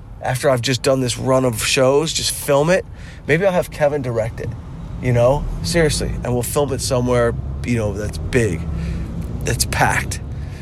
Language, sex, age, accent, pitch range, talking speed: English, male, 20-39, American, 105-130 Hz, 175 wpm